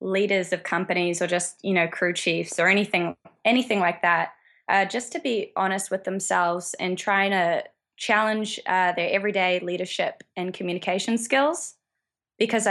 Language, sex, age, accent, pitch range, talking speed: English, female, 20-39, Australian, 175-200 Hz, 155 wpm